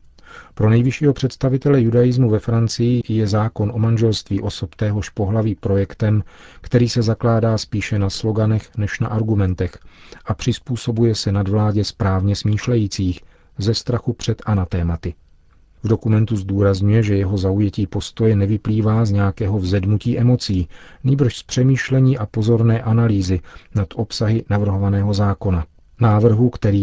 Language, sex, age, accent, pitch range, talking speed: Czech, male, 40-59, native, 95-115 Hz, 130 wpm